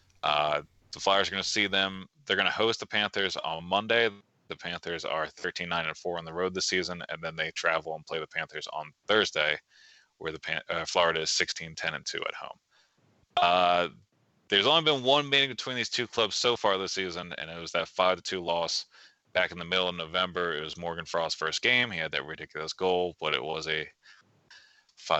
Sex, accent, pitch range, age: male, American, 80-105 Hz, 20-39